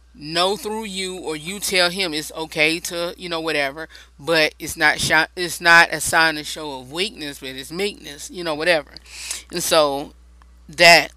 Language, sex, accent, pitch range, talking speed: English, female, American, 150-200 Hz, 185 wpm